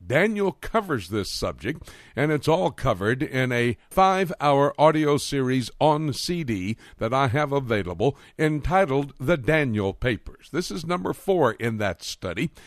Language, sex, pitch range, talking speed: English, male, 110-155 Hz, 140 wpm